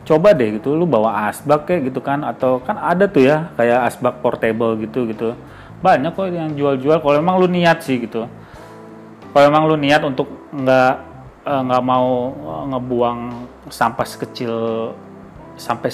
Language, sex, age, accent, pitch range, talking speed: Indonesian, male, 30-49, native, 115-155 Hz, 155 wpm